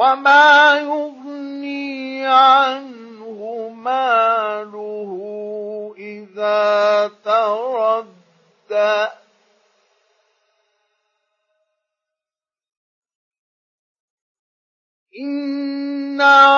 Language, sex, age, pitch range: Arabic, male, 50-69, 215-280 Hz